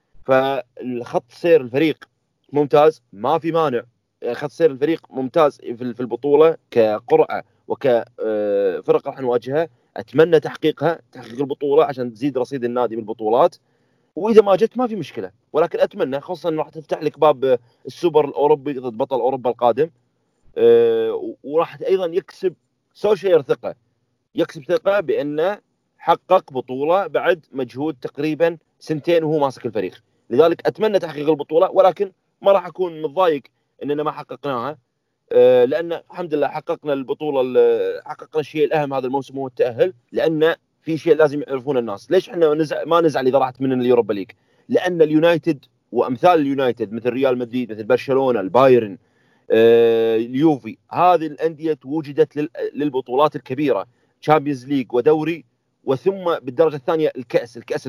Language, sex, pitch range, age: Arabic, male, 130-170 Hz, 30-49